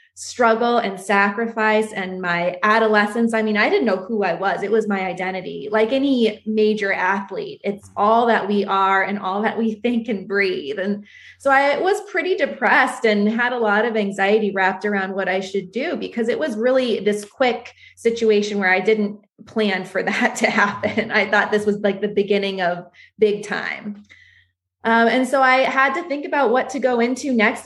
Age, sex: 20-39, female